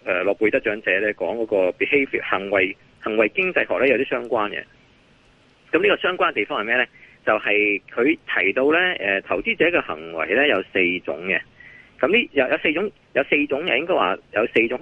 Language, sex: Chinese, male